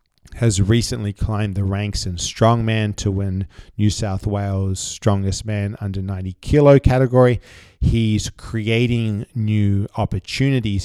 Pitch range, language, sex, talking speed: 100-115 Hz, English, male, 120 wpm